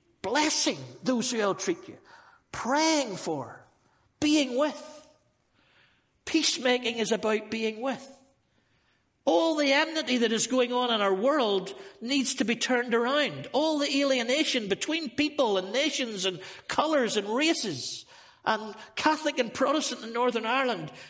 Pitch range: 205-295 Hz